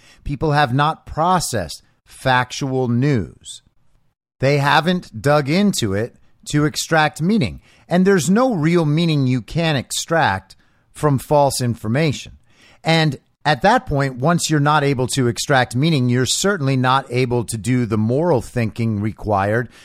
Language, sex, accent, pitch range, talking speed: English, male, American, 115-160 Hz, 140 wpm